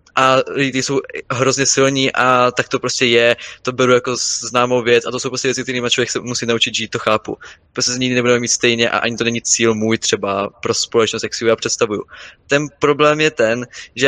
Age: 20-39